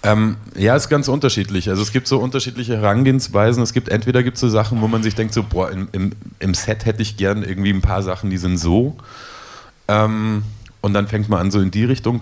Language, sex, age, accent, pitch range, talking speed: German, male, 30-49, German, 85-105 Hz, 235 wpm